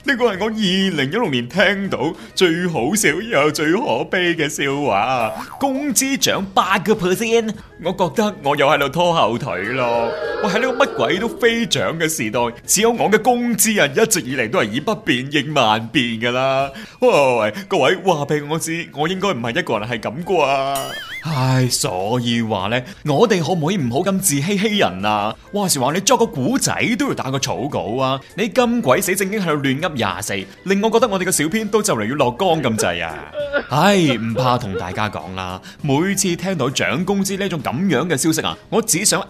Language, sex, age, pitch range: Chinese, male, 30-49, 135-200 Hz